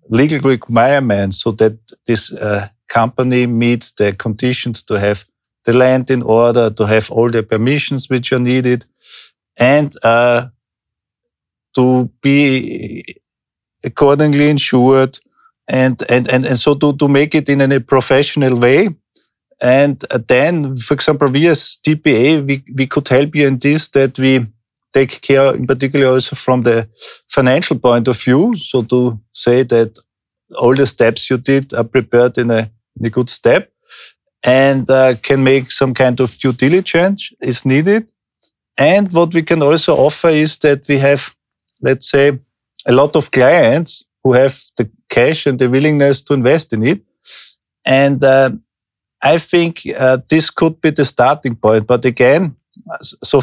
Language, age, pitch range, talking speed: Slovak, 40-59, 120-140 Hz, 155 wpm